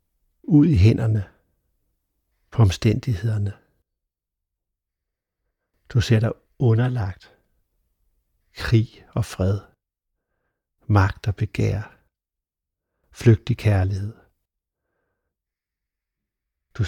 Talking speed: 65 wpm